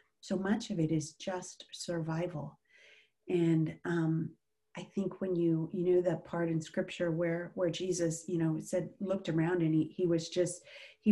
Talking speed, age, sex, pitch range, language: 180 wpm, 40-59, female, 160-180 Hz, English